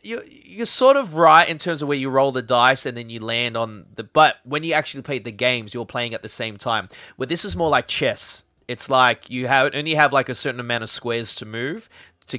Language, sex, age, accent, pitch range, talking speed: English, male, 20-39, Australian, 110-135 Hz, 260 wpm